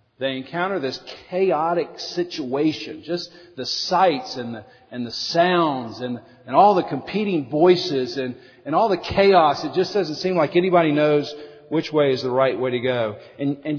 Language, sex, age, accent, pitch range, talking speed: English, male, 40-59, American, 135-185 Hz, 180 wpm